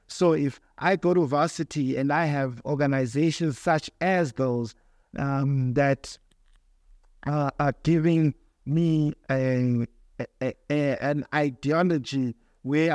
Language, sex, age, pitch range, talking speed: English, male, 60-79, 130-160 Hz, 100 wpm